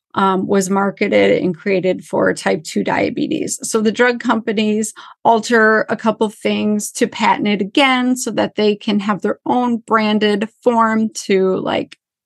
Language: English